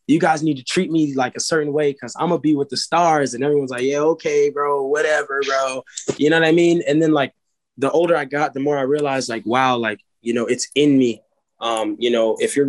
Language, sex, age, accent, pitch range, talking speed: English, male, 20-39, American, 120-145 Hz, 255 wpm